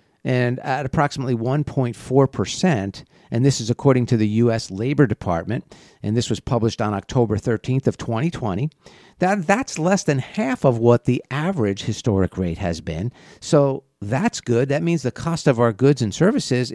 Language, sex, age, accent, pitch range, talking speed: English, male, 50-69, American, 105-145 Hz, 170 wpm